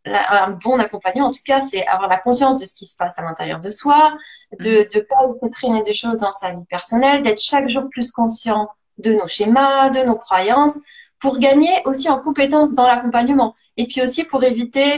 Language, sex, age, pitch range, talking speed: French, female, 20-39, 215-275 Hz, 210 wpm